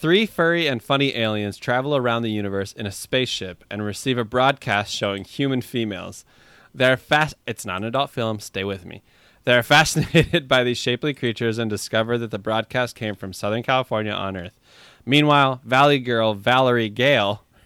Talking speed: 175 wpm